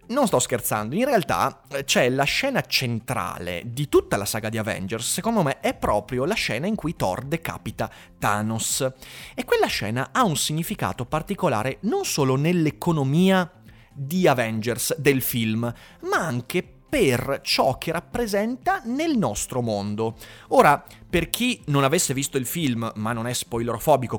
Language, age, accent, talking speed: Italian, 30-49, native, 155 wpm